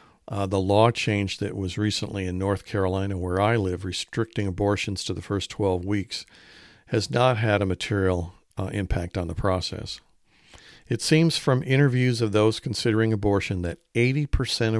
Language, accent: English, American